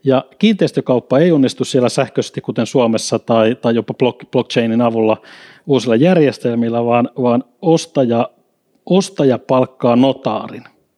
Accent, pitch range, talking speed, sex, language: native, 125-165 Hz, 115 wpm, male, Finnish